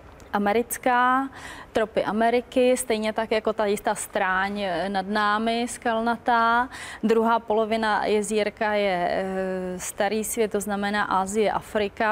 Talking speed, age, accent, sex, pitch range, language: 110 wpm, 20-39, native, female, 195-220 Hz, Czech